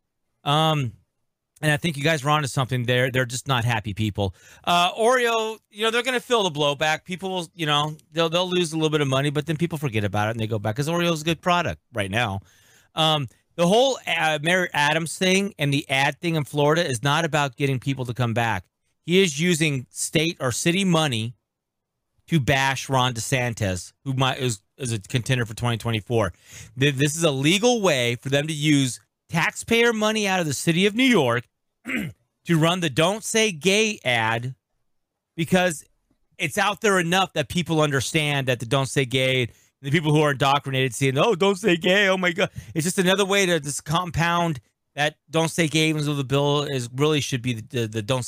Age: 30-49